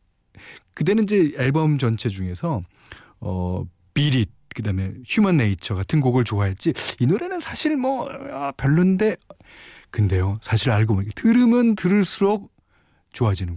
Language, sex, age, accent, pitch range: Korean, male, 40-59, native, 100-150 Hz